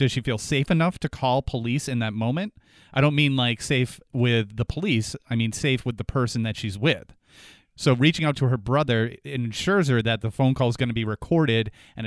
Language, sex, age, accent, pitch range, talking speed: English, male, 30-49, American, 110-135 Hz, 230 wpm